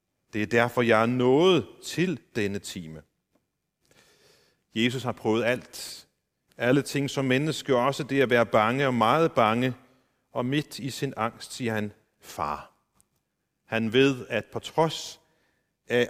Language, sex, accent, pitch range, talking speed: Danish, male, native, 110-150 Hz, 145 wpm